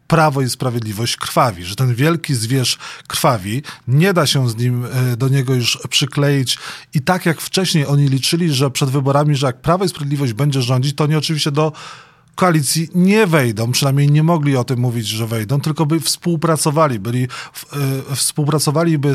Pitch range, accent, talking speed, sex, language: 130-155 Hz, native, 175 wpm, male, Polish